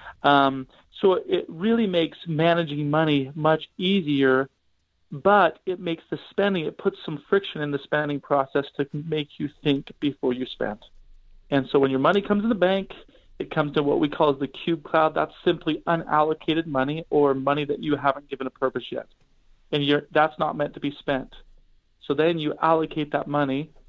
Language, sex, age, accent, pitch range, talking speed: English, male, 40-59, American, 135-160 Hz, 185 wpm